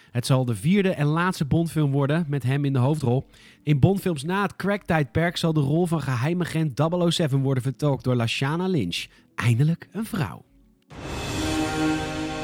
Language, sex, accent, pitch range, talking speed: Dutch, male, Dutch, 125-165 Hz, 155 wpm